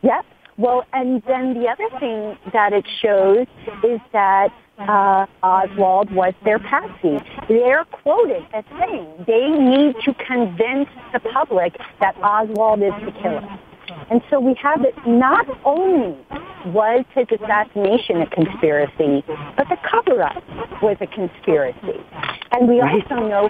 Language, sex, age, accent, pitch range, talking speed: English, female, 40-59, American, 195-265 Hz, 140 wpm